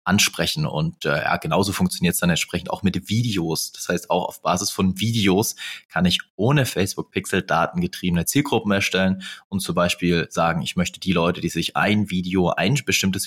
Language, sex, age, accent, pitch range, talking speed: German, male, 30-49, German, 90-115 Hz, 185 wpm